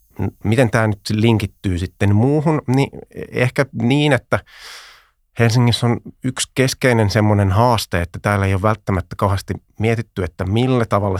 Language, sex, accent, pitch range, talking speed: Finnish, male, native, 90-110 Hz, 135 wpm